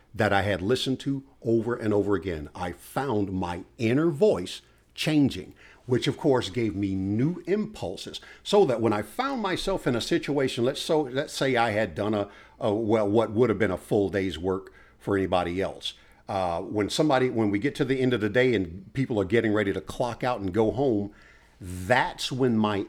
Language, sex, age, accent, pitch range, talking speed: English, male, 50-69, American, 100-135 Hz, 205 wpm